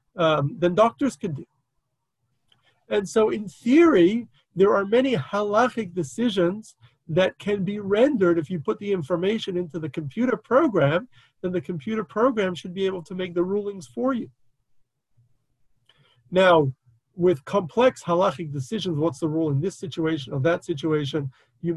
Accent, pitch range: American, 135-190 Hz